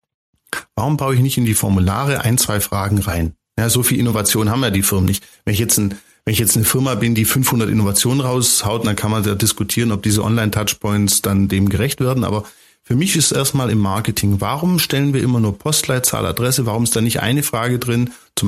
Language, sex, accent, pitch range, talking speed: German, male, German, 105-140 Hz, 220 wpm